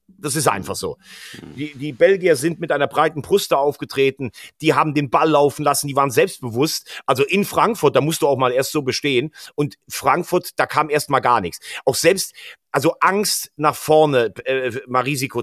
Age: 40-59